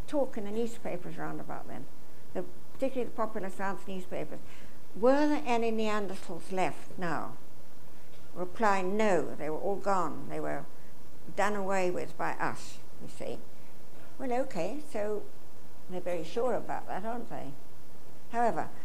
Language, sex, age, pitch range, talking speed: English, female, 60-79, 180-225 Hz, 145 wpm